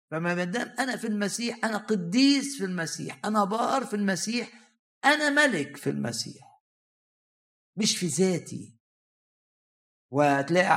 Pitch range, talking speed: 150-215 Hz, 115 wpm